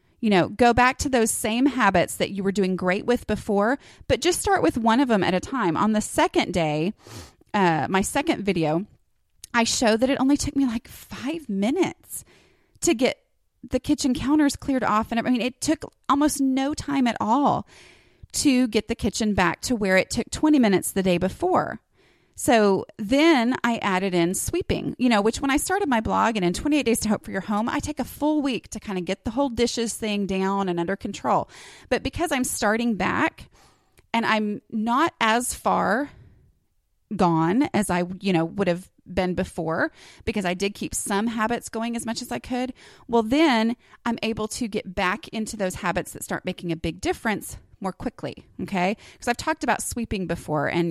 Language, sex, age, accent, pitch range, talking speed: English, female, 30-49, American, 185-255 Hz, 200 wpm